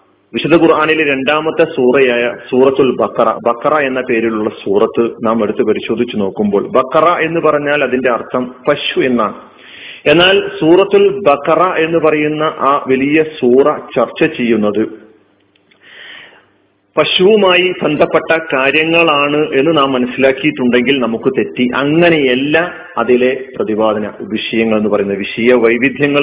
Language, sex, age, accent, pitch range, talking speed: Malayalam, male, 40-59, native, 125-170 Hz, 105 wpm